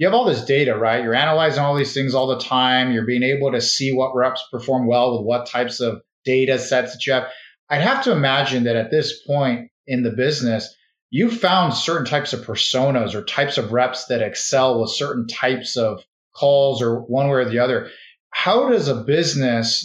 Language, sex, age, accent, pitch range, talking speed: English, male, 30-49, American, 125-150 Hz, 215 wpm